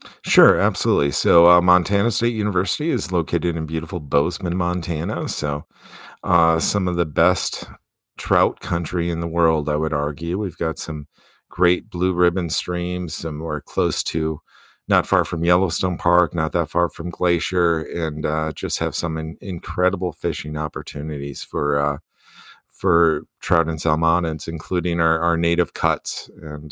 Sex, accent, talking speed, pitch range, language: male, American, 155 wpm, 75-90 Hz, English